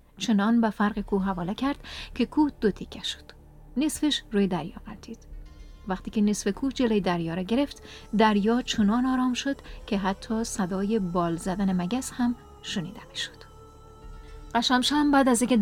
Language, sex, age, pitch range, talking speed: Persian, female, 30-49, 195-240 Hz, 160 wpm